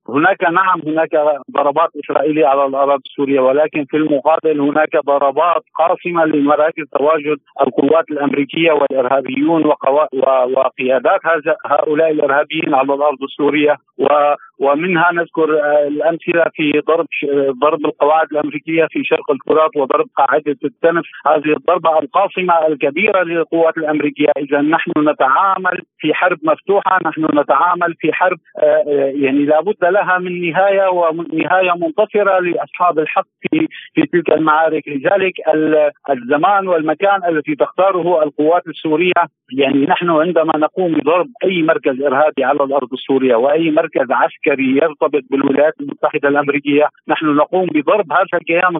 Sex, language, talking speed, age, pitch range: male, Arabic, 125 wpm, 50-69, 145-175 Hz